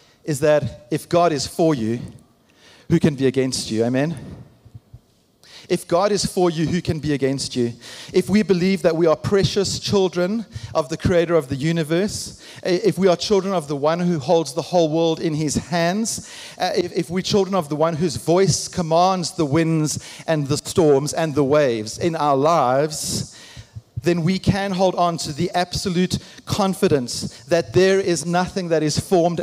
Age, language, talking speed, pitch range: 40-59, English, 180 wpm, 140-180 Hz